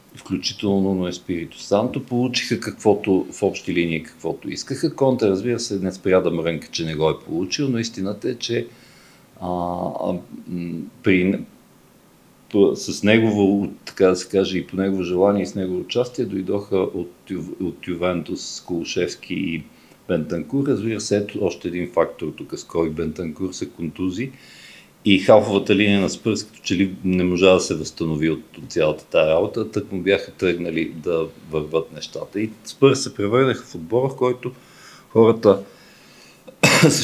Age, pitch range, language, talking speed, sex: 50-69, 90-115 Hz, Bulgarian, 160 wpm, male